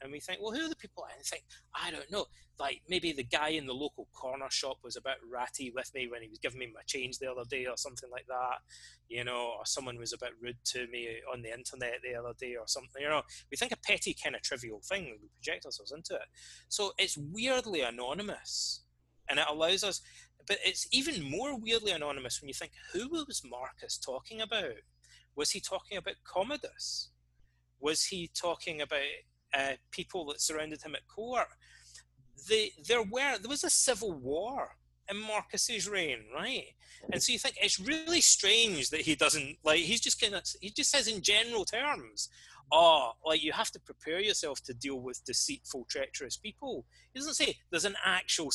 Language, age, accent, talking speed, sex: English, 30-49, British, 205 wpm, male